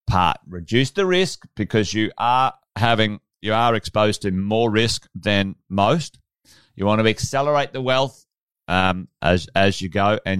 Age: 30-49